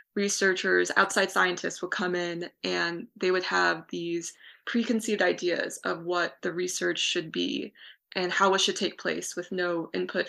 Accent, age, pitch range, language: American, 20-39, 175-205 Hz, English